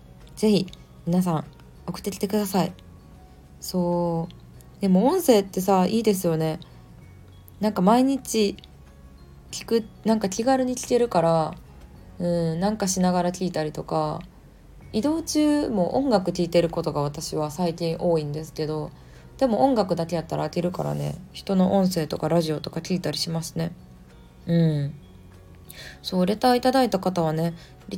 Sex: female